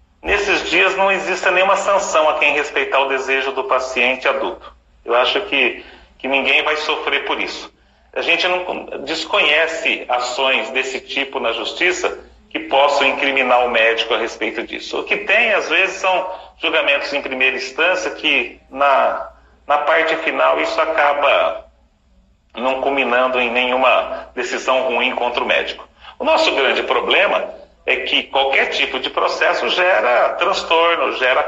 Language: English